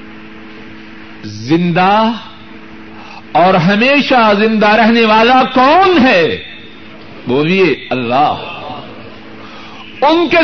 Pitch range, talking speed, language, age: 110-170 Hz, 70 wpm, Urdu, 60-79